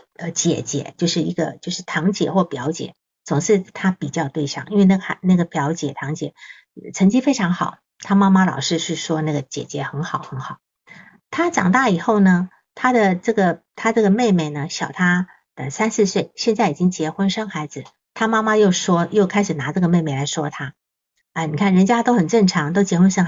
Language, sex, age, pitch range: Chinese, female, 50-69, 155-210 Hz